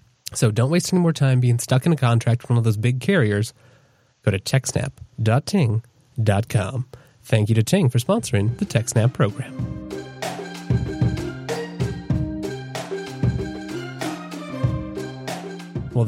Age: 30-49